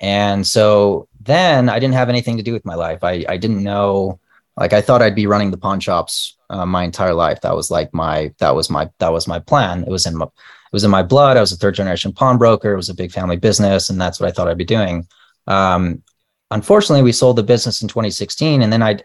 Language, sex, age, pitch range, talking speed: English, male, 30-49, 90-115 Hz, 250 wpm